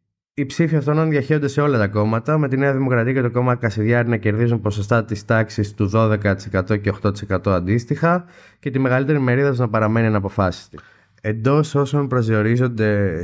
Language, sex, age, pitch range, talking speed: Greek, male, 20-39, 95-120 Hz, 165 wpm